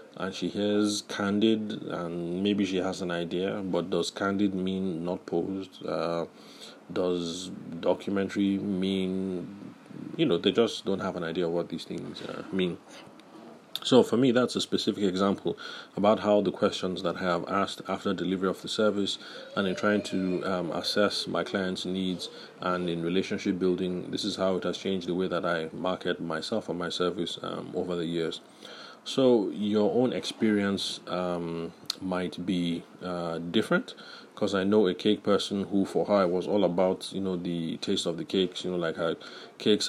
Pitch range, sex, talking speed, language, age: 90-100 Hz, male, 180 wpm, English, 30-49